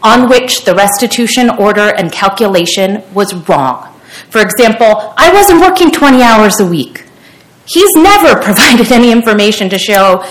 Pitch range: 200-280 Hz